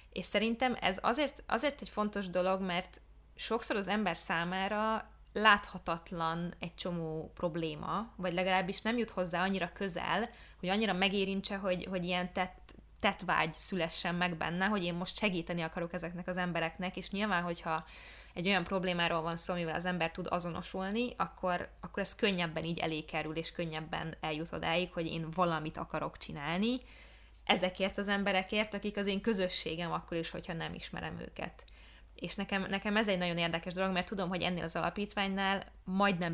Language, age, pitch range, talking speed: Hungarian, 20-39, 170-195 Hz, 165 wpm